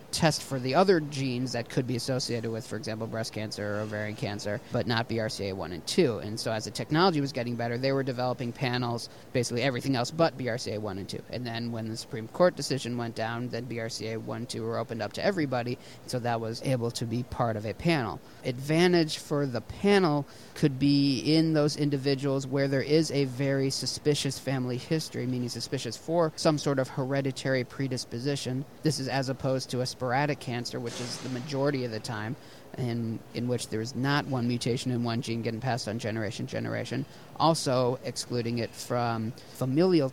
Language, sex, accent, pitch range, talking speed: English, male, American, 115-140 Hz, 195 wpm